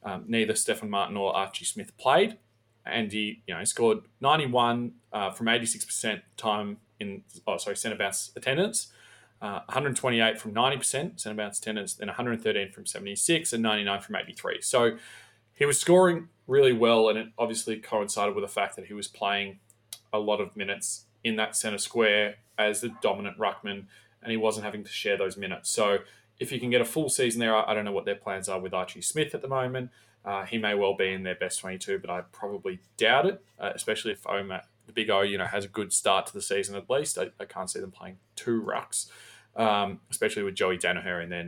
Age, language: 20-39, English